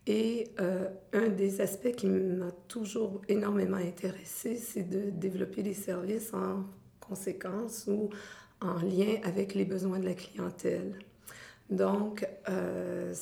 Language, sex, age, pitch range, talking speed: French, female, 50-69, 190-210 Hz, 125 wpm